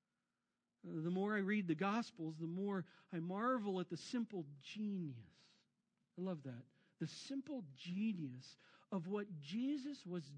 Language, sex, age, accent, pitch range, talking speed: English, male, 50-69, American, 160-230 Hz, 140 wpm